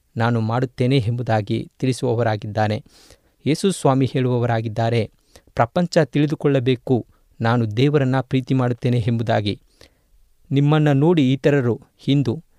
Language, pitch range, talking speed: Kannada, 115-140 Hz, 80 wpm